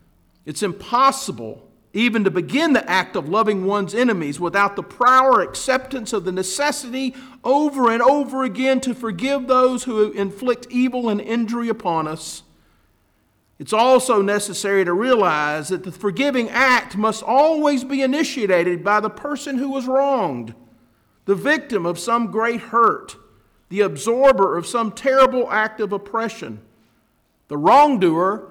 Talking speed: 140 wpm